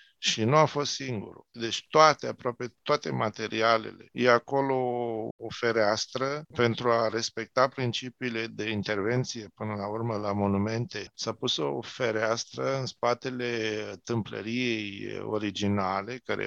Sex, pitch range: male, 105-125 Hz